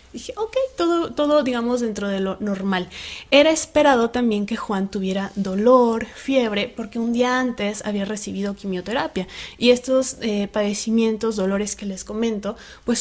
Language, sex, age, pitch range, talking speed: Spanish, female, 20-39, 200-250 Hz, 150 wpm